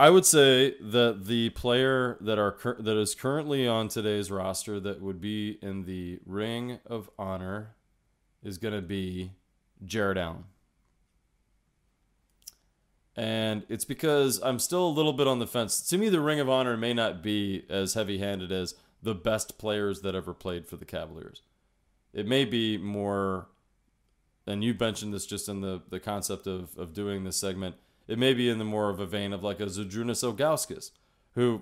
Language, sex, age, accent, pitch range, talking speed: English, male, 30-49, American, 100-120 Hz, 175 wpm